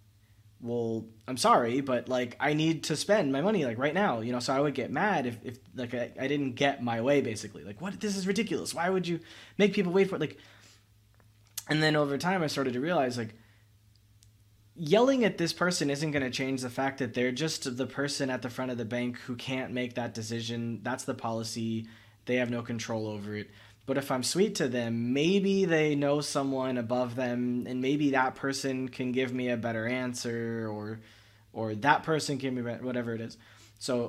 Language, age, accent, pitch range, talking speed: English, 20-39, American, 115-145 Hz, 215 wpm